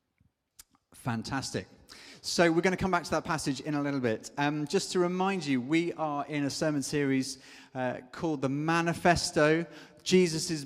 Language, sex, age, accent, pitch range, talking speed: English, male, 30-49, British, 135-170 Hz, 170 wpm